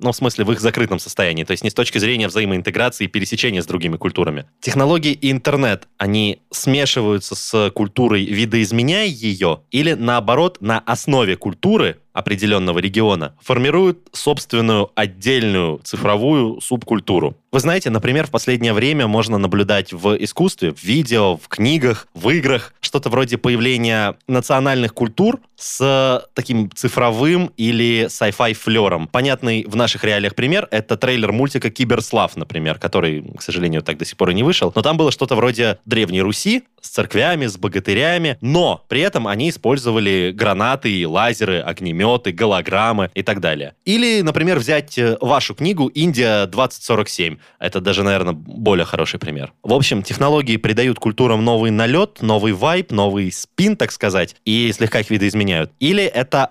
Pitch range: 100-130 Hz